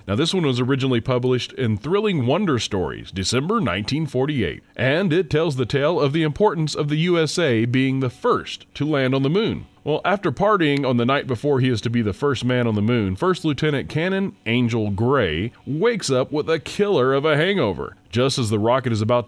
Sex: male